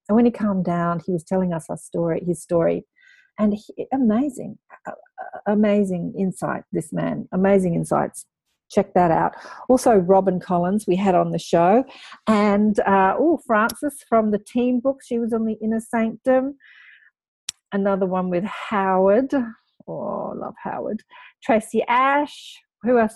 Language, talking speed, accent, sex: English, 145 wpm, Australian, female